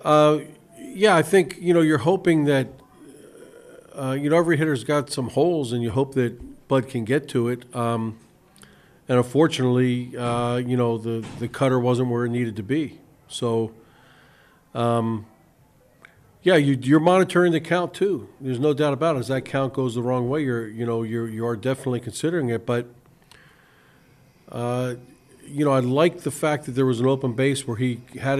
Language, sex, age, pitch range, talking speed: English, male, 50-69, 120-150 Hz, 190 wpm